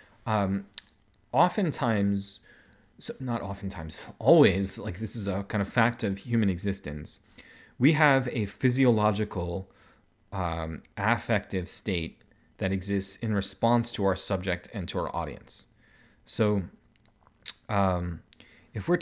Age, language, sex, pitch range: 30-49, English, male, 95-115 Hz